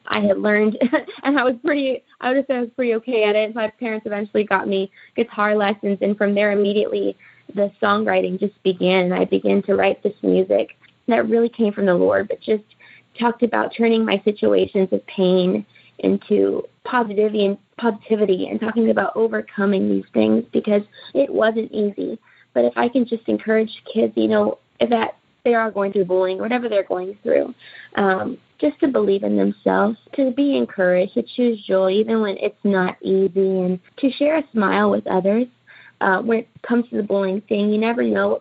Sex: female